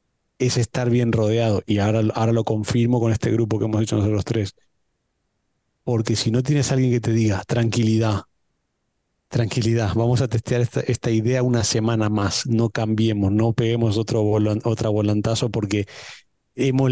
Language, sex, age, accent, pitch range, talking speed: Spanish, male, 30-49, Argentinian, 110-130 Hz, 165 wpm